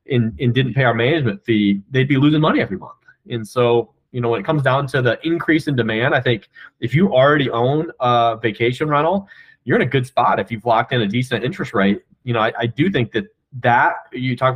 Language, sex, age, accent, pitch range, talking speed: English, male, 30-49, American, 120-145 Hz, 240 wpm